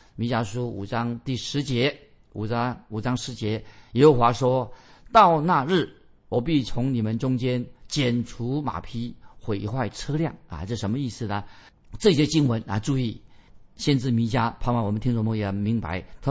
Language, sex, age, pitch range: Chinese, male, 50-69, 110-145 Hz